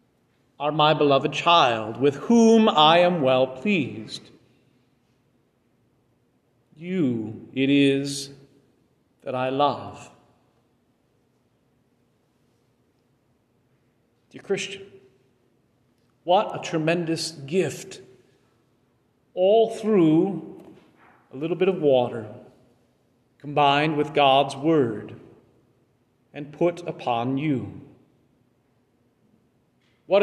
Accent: American